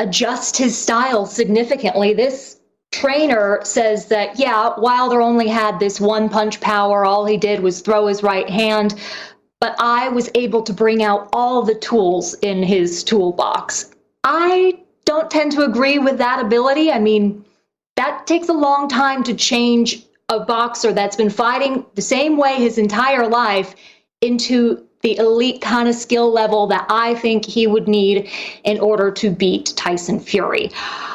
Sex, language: female, English